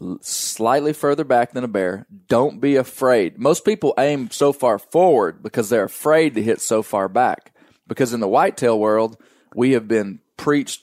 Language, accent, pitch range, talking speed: English, American, 105-130 Hz, 175 wpm